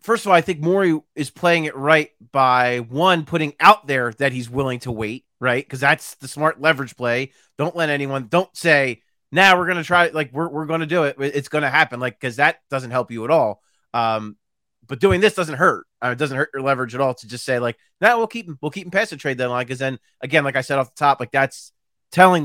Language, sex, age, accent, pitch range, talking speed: English, male, 30-49, American, 130-165 Hz, 275 wpm